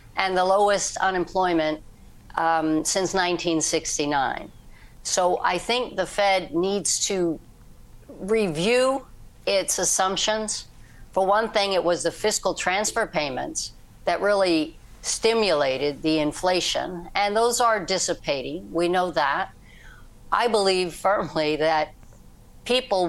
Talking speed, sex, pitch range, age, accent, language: 110 wpm, female, 165-200 Hz, 60-79, American, English